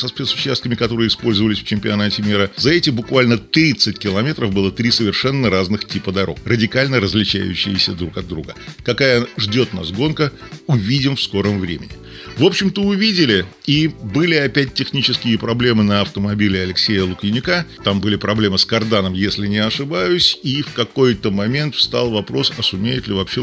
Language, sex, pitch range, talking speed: Russian, male, 100-130 Hz, 155 wpm